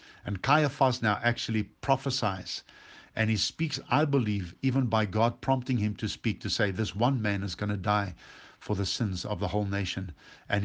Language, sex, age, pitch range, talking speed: English, male, 50-69, 105-135 Hz, 190 wpm